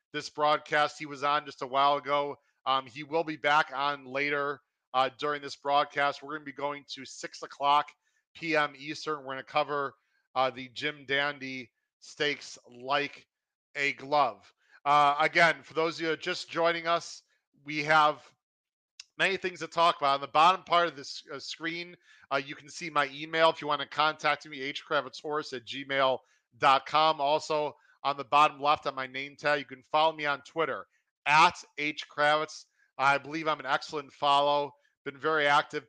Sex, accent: male, American